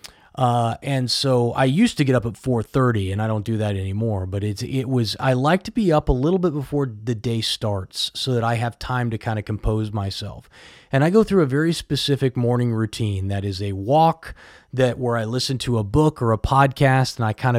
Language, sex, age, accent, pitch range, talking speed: English, male, 30-49, American, 110-140 Hz, 235 wpm